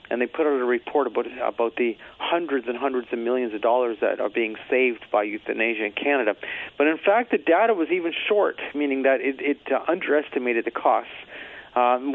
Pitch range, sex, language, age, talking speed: 125-165 Hz, male, English, 40-59, 200 wpm